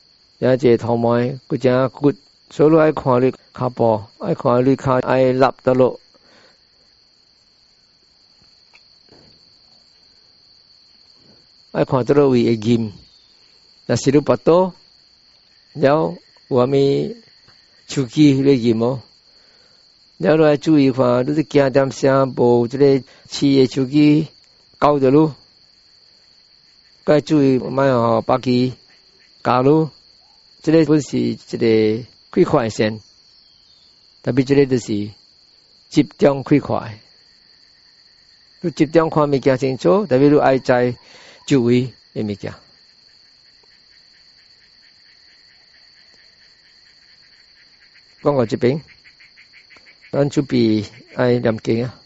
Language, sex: English, male